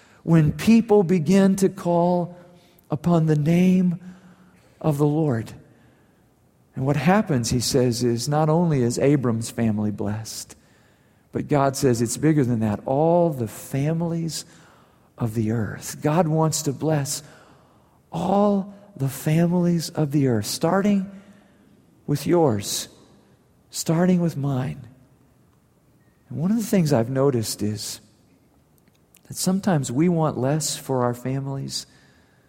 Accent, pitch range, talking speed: American, 110-155 Hz, 125 wpm